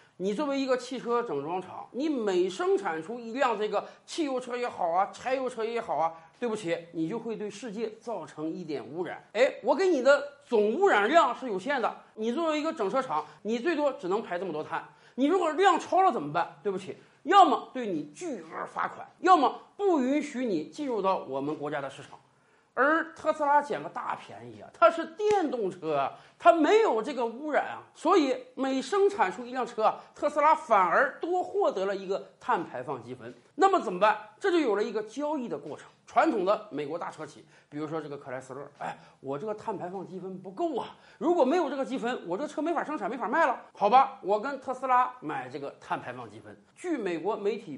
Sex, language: male, Chinese